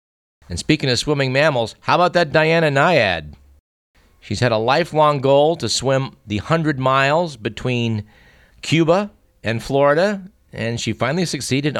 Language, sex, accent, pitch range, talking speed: English, male, American, 105-145 Hz, 140 wpm